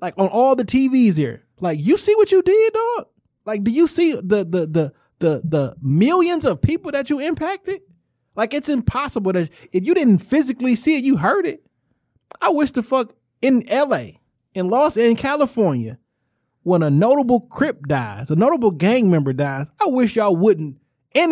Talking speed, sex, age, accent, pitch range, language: 185 wpm, male, 20-39, American, 145-245 Hz, English